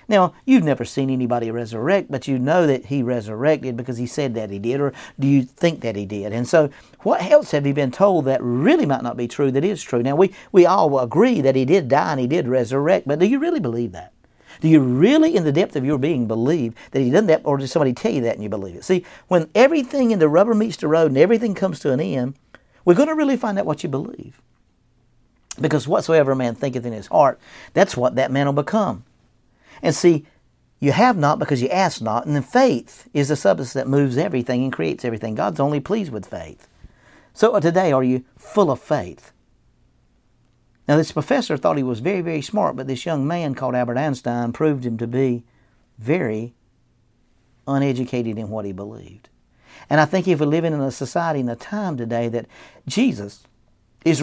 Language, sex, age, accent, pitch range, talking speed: English, male, 50-69, American, 120-160 Hz, 220 wpm